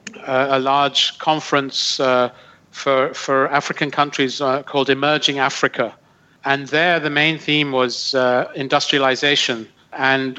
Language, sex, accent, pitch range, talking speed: English, male, British, 130-145 Hz, 125 wpm